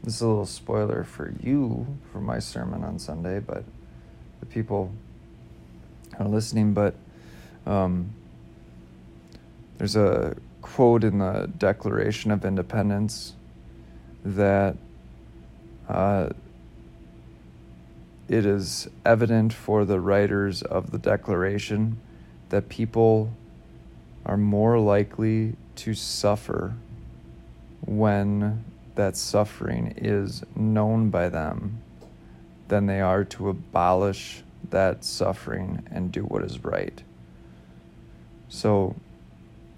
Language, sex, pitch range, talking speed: English, male, 95-110 Hz, 100 wpm